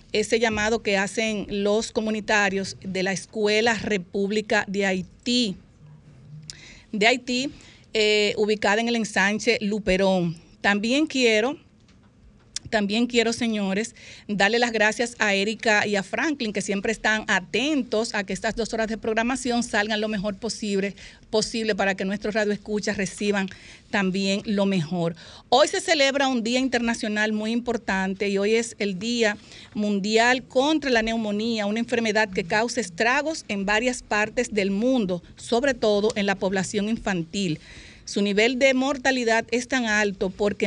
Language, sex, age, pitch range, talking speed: Spanish, female, 50-69, 200-235 Hz, 145 wpm